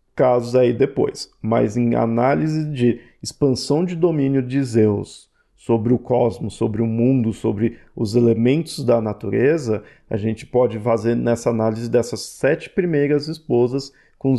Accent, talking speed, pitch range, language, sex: Brazilian, 140 wpm, 115-145 Hz, Portuguese, male